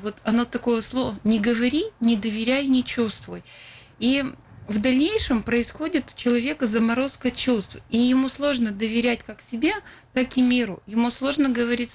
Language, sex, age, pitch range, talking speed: Russian, female, 30-49, 195-240 Hz, 150 wpm